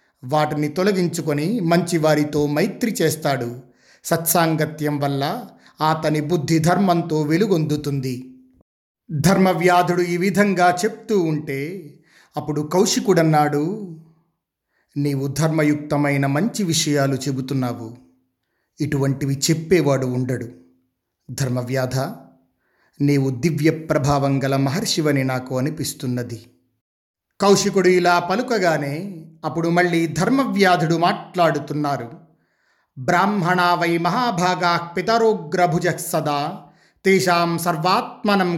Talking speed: 70 wpm